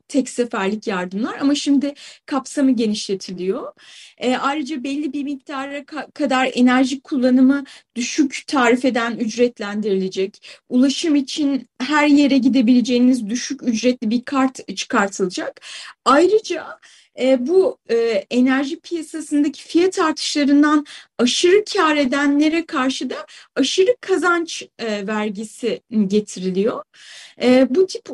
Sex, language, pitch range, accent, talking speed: female, Turkish, 245-335 Hz, native, 100 wpm